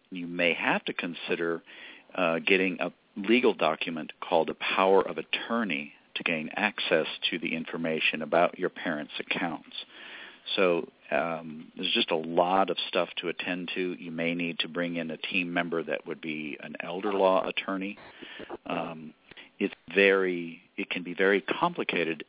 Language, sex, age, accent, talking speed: English, male, 50-69, American, 160 wpm